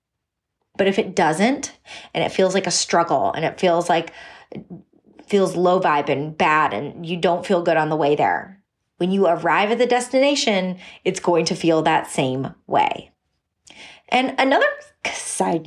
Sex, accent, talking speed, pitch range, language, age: female, American, 170 wpm, 170-230 Hz, English, 30-49